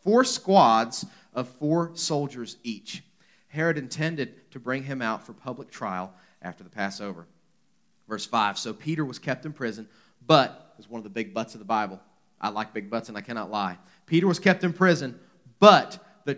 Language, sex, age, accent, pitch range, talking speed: English, male, 30-49, American, 135-180 Hz, 185 wpm